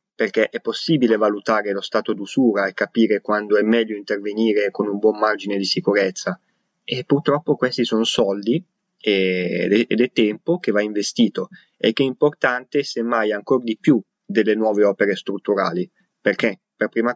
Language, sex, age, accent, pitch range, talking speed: Italian, male, 20-39, native, 105-115 Hz, 155 wpm